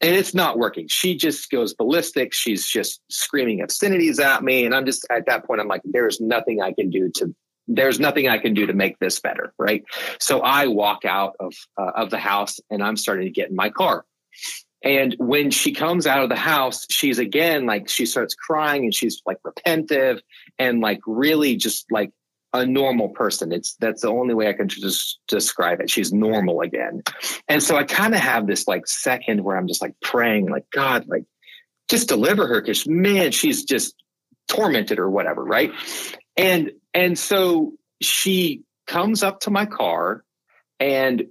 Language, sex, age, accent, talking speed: English, male, 30-49, American, 190 wpm